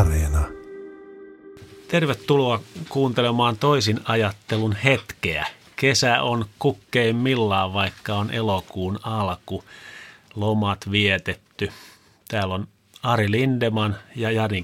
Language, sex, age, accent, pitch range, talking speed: Finnish, male, 30-49, native, 95-115 Hz, 80 wpm